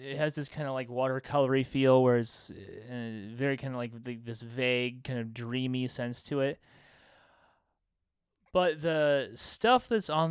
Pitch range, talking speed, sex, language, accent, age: 120-165 Hz, 155 wpm, male, English, American, 20-39